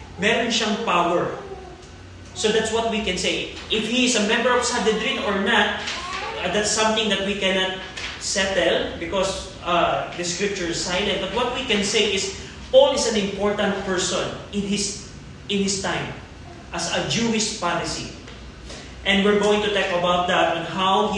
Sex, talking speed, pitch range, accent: male, 165 wpm, 185-220 Hz, native